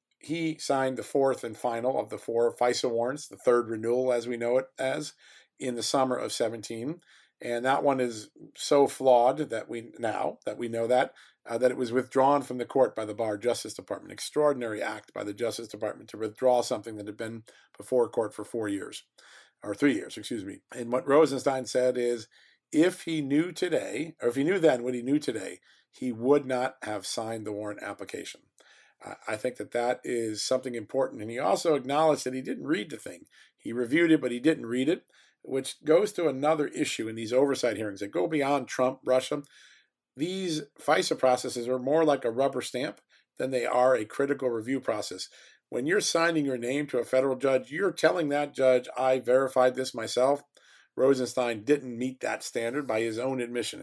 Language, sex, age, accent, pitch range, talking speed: English, male, 50-69, American, 120-140 Hz, 200 wpm